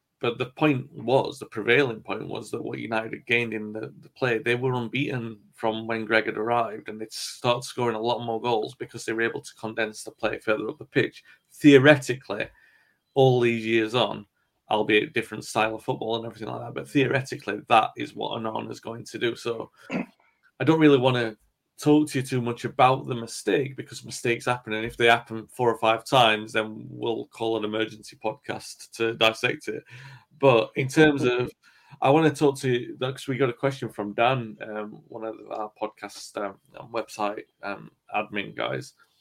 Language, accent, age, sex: English, British, 30-49, male